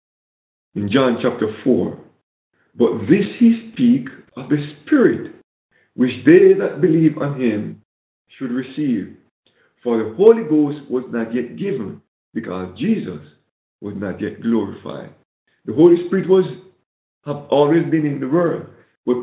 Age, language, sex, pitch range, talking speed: 50-69, English, male, 120-170 Hz, 135 wpm